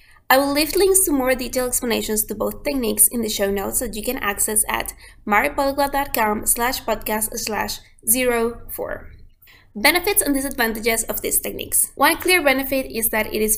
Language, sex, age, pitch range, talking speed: English, female, 20-39, 210-255 Hz, 170 wpm